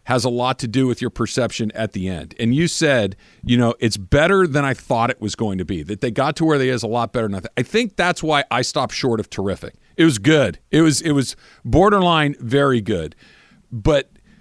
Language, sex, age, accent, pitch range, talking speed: English, male, 50-69, American, 115-165 Hz, 240 wpm